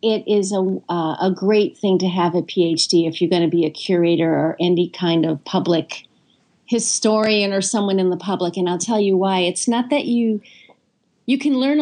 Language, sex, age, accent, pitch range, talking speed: English, female, 40-59, American, 175-220 Hz, 205 wpm